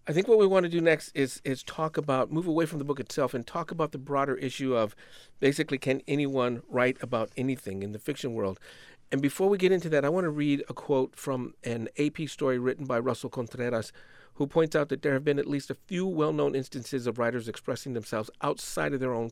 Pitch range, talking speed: 120-150 Hz, 235 wpm